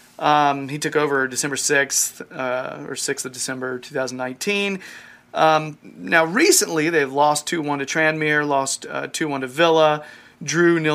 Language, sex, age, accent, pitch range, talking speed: English, male, 30-49, American, 140-170 Hz, 140 wpm